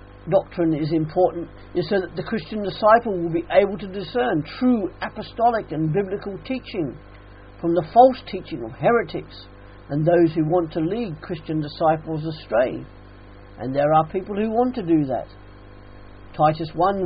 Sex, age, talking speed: male, 50-69, 155 wpm